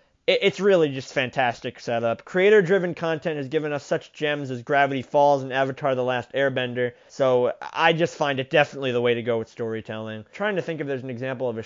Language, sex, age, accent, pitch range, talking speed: English, male, 20-39, American, 115-145 Hz, 210 wpm